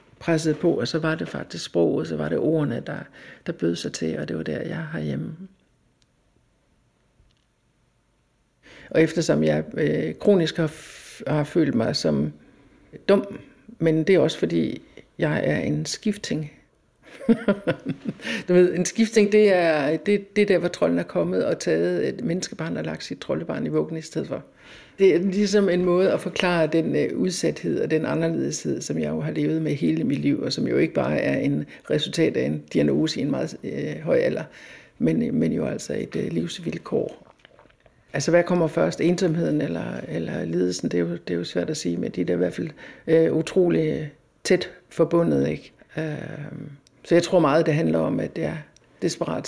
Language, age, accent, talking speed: Danish, 60-79, native, 185 wpm